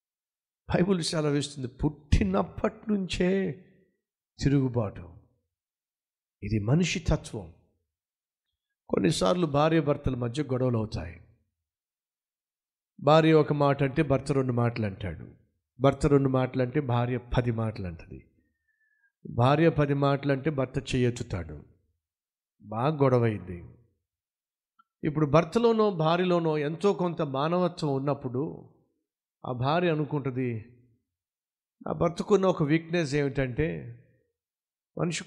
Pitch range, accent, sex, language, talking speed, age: 115-160 Hz, native, male, Telugu, 95 wpm, 50-69